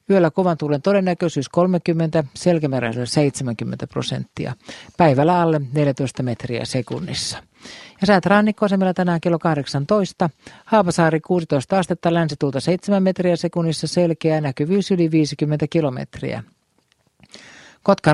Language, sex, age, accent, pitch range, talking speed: Finnish, male, 50-69, native, 140-175 Hz, 105 wpm